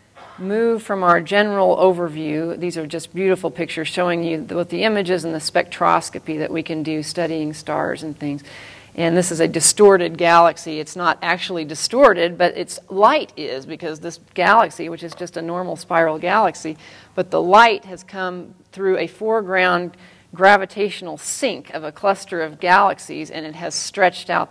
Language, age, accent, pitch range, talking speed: English, 40-59, American, 160-185 Hz, 170 wpm